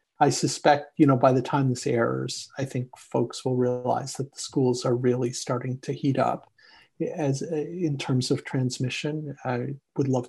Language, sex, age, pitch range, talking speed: English, male, 40-59, 125-140 Hz, 180 wpm